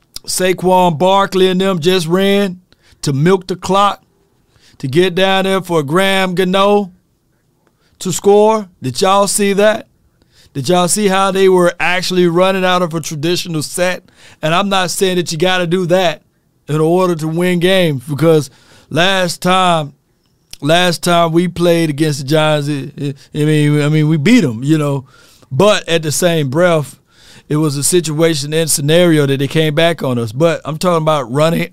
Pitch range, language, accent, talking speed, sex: 130-180 Hz, English, American, 170 wpm, male